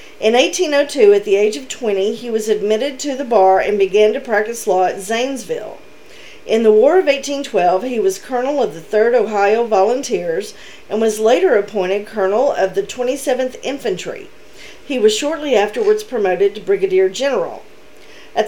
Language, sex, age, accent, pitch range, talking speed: English, female, 40-59, American, 210-320 Hz, 165 wpm